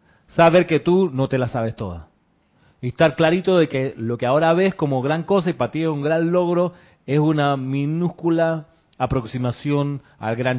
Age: 30-49